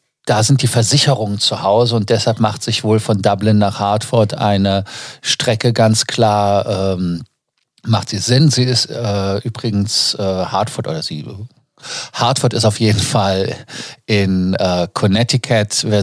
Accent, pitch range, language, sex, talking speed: German, 100-120 Hz, German, male, 150 wpm